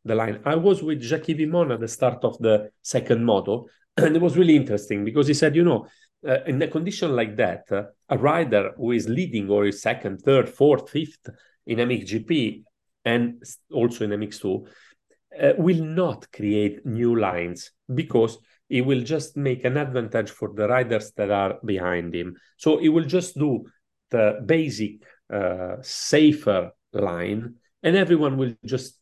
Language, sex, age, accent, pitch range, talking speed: English, male, 40-59, Italian, 105-150 Hz, 170 wpm